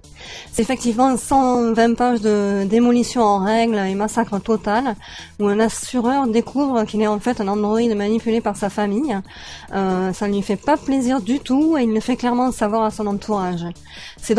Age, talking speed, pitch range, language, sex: 20-39, 185 wpm, 195-230 Hz, French, female